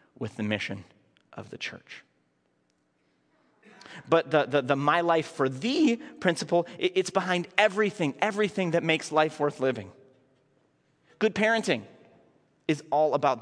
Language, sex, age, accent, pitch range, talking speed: English, male, 30-49, American, 135-190 Hz, 135 wpm